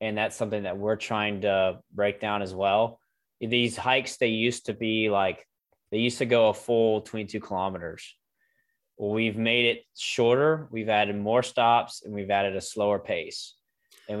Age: 20-39